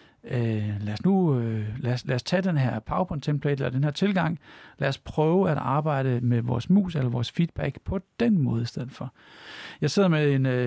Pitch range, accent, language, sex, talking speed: 135-175 Hz, native, Danish, male, 210 wpm